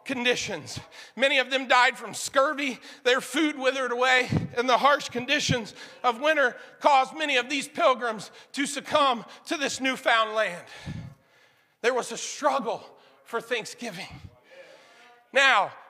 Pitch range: 210-270 Hz